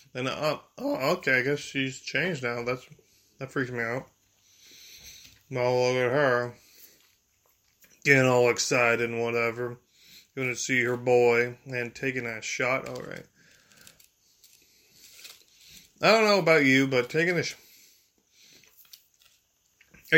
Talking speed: 130 wpm